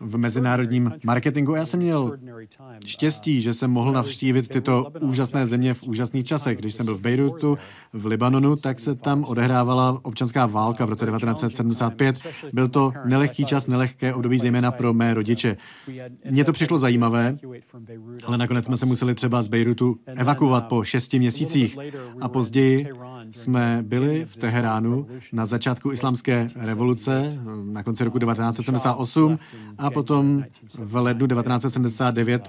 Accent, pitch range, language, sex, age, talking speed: native, 120-135 Hz, Czech, male, 30-49, 145 wpm